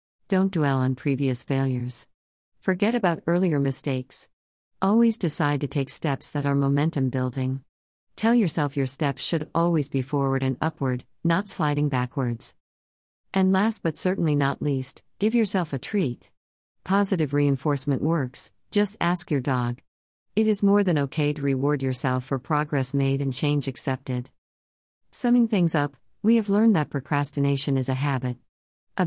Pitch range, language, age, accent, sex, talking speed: 130-170 Hz, English, 50-69, American, female, 155 wpm